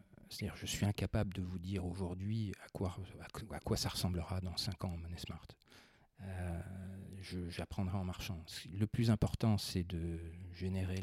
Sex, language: male, French